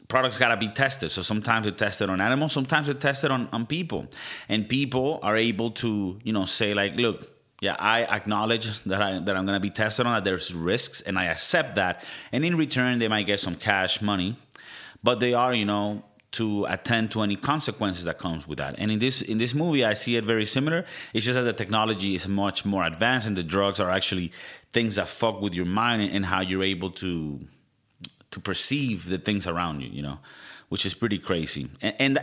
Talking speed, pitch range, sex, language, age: 220 wpm, 95-125 Hz, male, English, 30-49